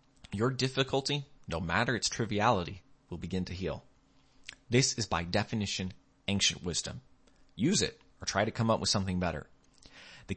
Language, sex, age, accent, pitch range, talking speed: English, male, 30-49, American, 85-115 Hz, 155 wpm